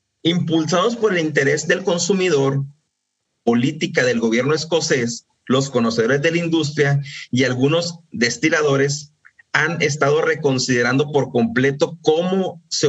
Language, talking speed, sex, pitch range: Spanish, 115 wpm, male, 130-165 Hz